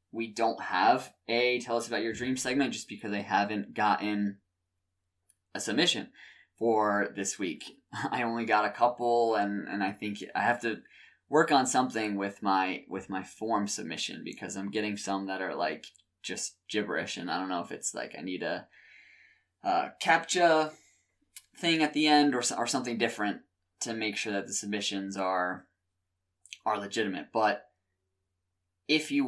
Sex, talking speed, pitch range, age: male, 170 wpm, 100-120 Hz, 20-39